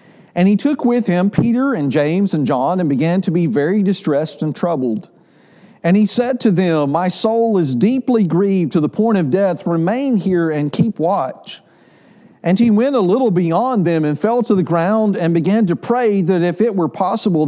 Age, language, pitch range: 50-69, English, 170-225 Hz